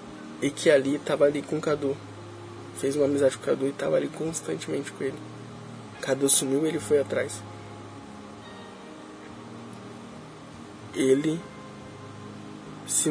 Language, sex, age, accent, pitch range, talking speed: Portuguese, male, 20-39, Brazilian, 115-165 Hz, 130 wpm